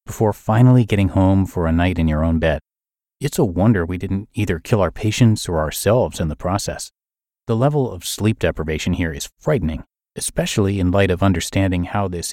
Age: 30-49